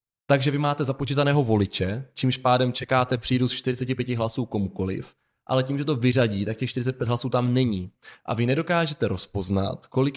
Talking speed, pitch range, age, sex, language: 170 wpm, 110-140 Hz, 20-39, male, Czech